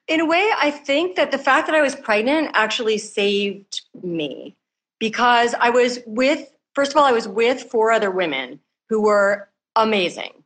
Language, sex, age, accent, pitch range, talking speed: English, female, 30-49, American, 190-235 Hz, 180 wpm